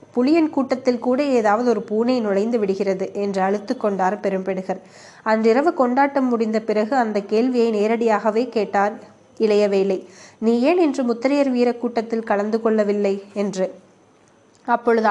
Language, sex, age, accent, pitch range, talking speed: Tamil, female, 20-39, native, 200-245 Hz, 125 wpm